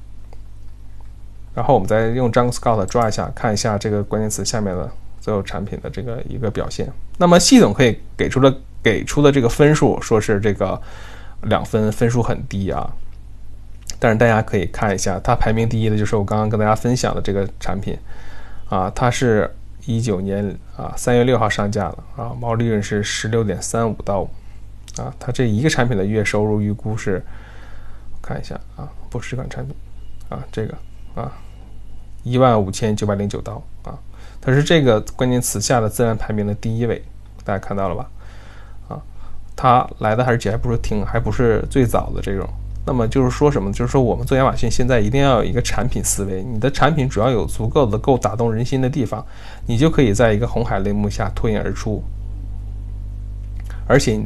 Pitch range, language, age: 100-120 Hz, Chinese, 20-39